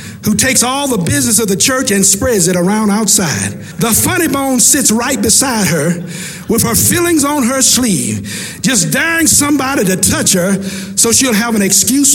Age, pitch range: 50-69, 205-280 Hz